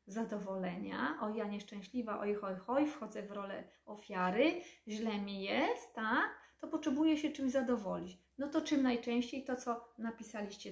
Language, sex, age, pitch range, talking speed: Polish, female, 30-49, 205-255 Hz, 150 wpm